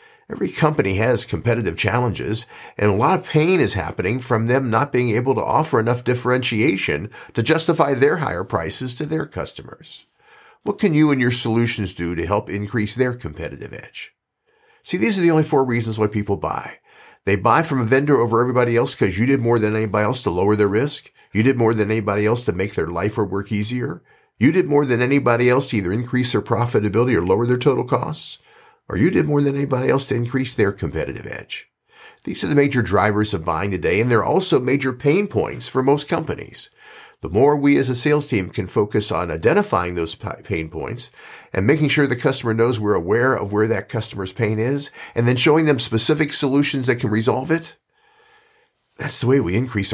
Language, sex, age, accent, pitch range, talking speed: English, male, 50-69, American, 105-140 Hz, 205 wpm